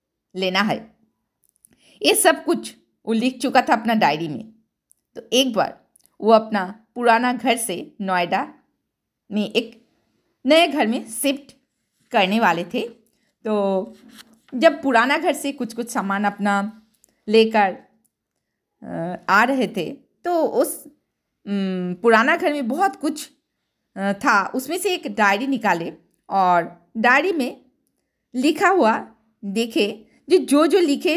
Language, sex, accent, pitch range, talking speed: Hindi, female, native, 220-330 Hz, 125 wpm